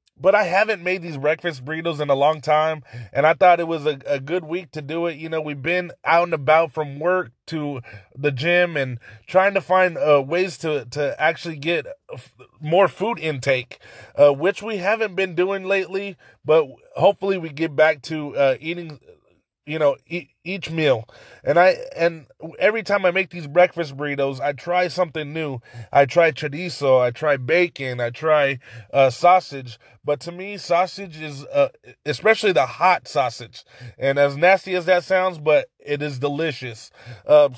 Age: 20-39